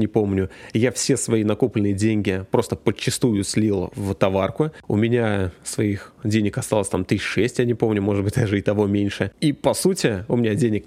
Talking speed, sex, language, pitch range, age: 190 wpm, male, Russian, 105-130 Hz, 20-39